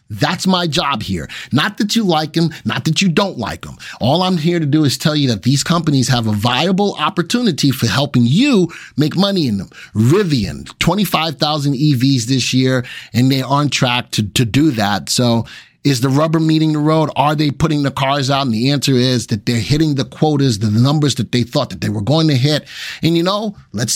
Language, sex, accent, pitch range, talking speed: English, male, American, 125-170 Hz, 220 wpm